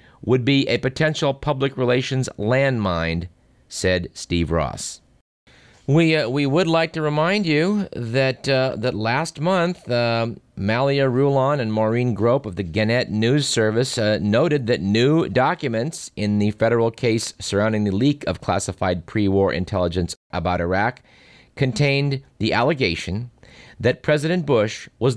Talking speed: 140 wpm